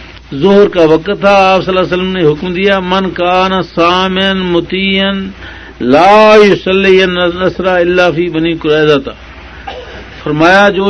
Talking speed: 130 wpm